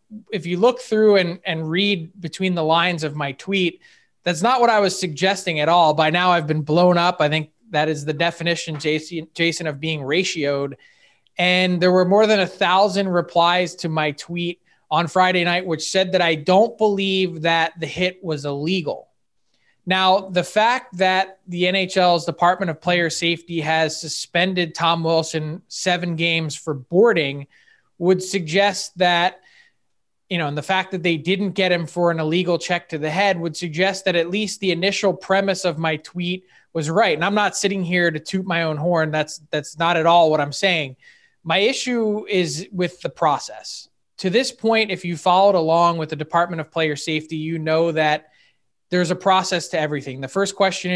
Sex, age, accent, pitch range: male, 20-39, American, 160-190 Hz